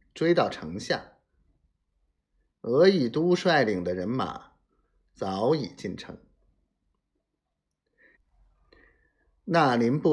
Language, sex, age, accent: Chinese, male, 50-69, native